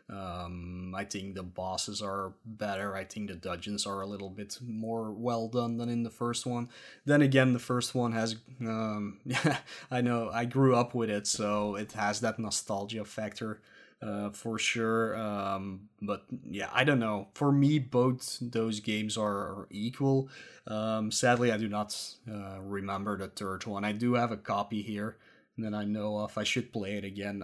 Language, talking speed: English, 190 wpm